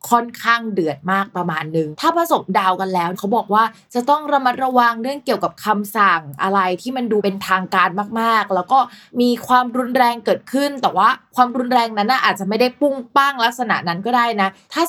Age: 20-39